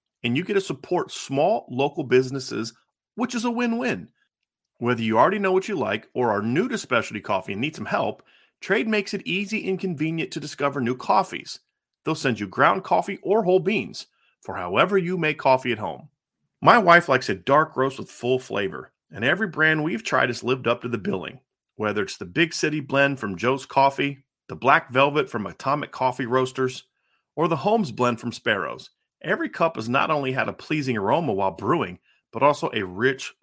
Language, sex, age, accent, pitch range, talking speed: English, male, 30-49, American, 130-185 Hz, 200 wpm